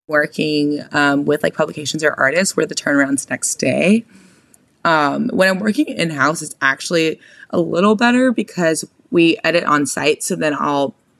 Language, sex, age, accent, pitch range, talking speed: English, female, 20-39, American, 135-190 Hz, 160 wpm